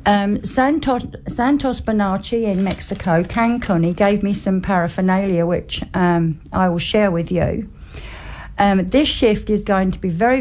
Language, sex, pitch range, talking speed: English, female, 170-210 Hz, 155 wpm